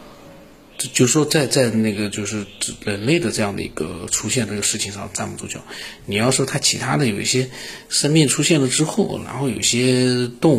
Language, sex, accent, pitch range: Chinese, male, native, 110-135 Hz